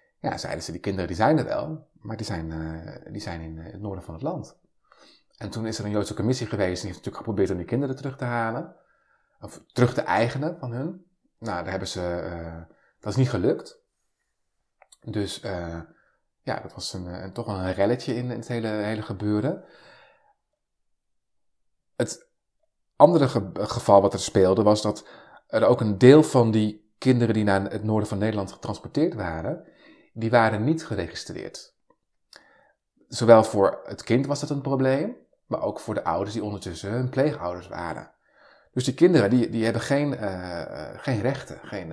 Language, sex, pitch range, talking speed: Dutch, male, 100-130 Hz, 175 wpm